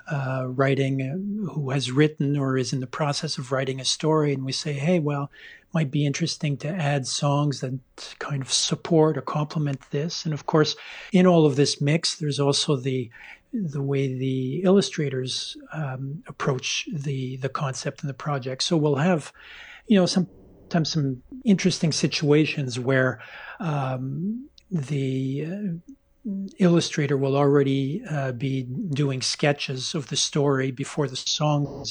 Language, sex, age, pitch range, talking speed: English, male, 40-59, 135-170 Hz, 155 wpm